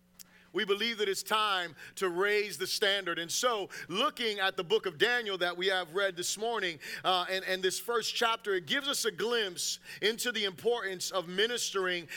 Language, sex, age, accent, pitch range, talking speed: English, male, 30-49, American, 180-220 Hz, 190 wpm